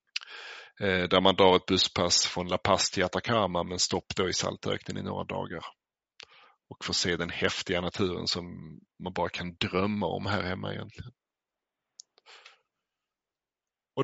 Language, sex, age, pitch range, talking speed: Swedish, male, 30-49, 95-110 Hz, 145 wpm